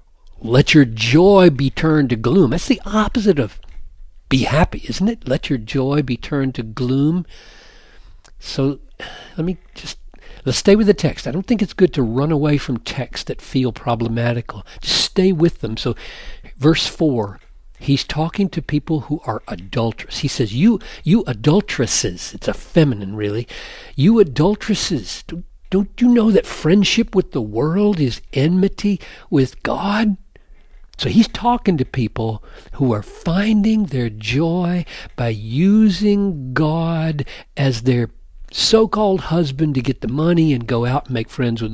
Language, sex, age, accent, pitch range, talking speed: English, male, 60-79, American, 120-180 Hz, 155 wpm